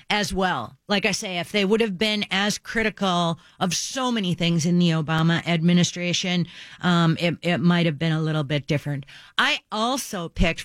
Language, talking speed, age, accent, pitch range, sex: English, 185 wpm, 40-59, American, 170-205 Hz, female